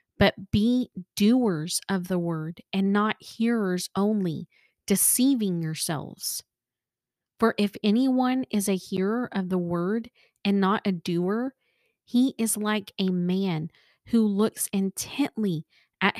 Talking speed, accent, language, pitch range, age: 125 wpm, American, English, 185-230 Hz, 30-49